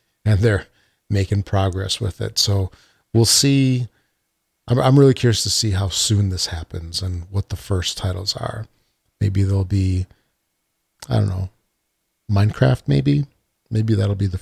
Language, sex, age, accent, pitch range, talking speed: English, male, 40-59, American, 100-115 Hz, 155 wpm